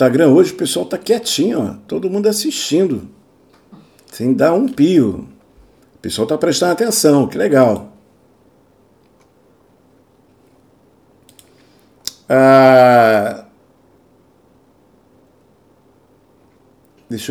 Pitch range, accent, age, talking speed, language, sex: 130-195 Hz, Brazilian, 50-69, 75 wpm, Portuguese, male